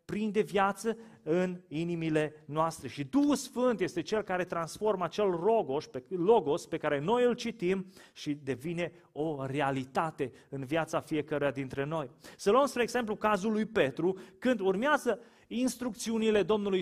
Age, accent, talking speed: 30-49, native, 140 wpm